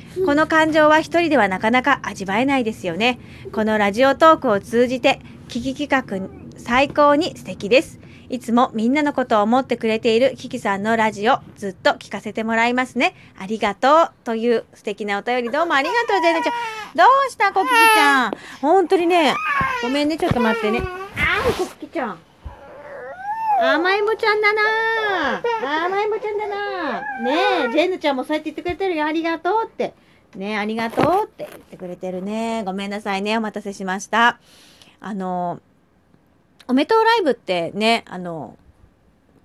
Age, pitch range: 30-49, 220-335 Hz